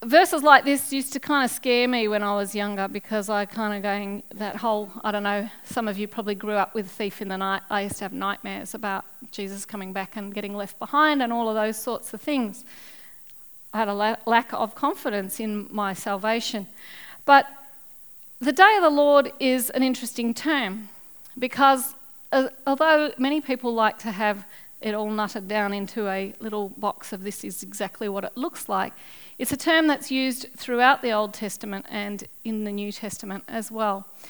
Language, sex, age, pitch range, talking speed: English, female, 40-59, 210-265 Hz, 195 wpm